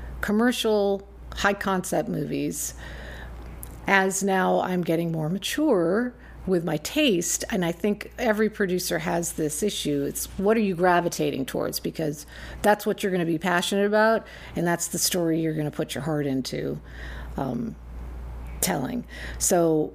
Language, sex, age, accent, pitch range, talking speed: English, female, 50-69, American, 145-195 Hz, 150 wpm